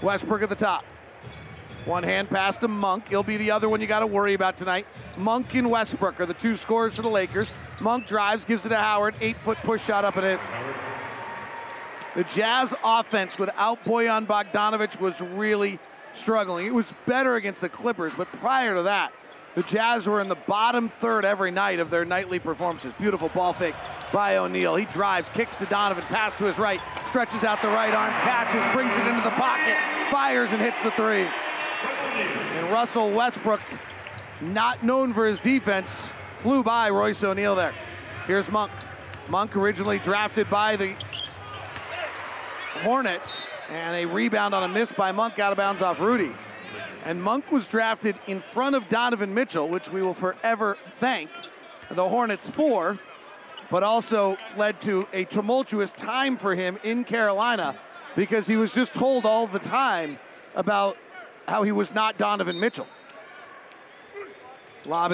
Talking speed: 170 wpm